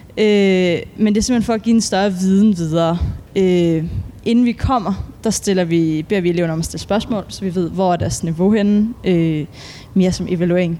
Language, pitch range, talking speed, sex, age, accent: Danish, 175-210 Hz, 210 wpm, female, 20-39, native